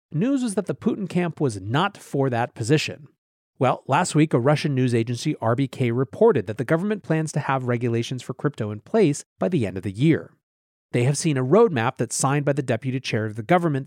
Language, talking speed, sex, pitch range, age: English, 220 wpm, male, 120-170 Hz, 30-49